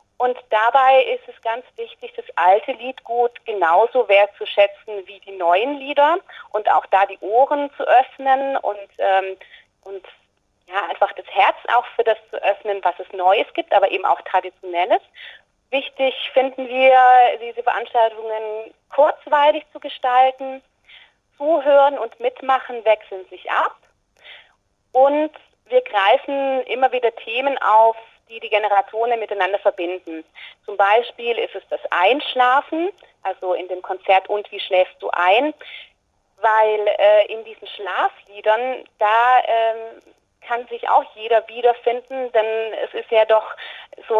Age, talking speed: 30-49, 135 wpm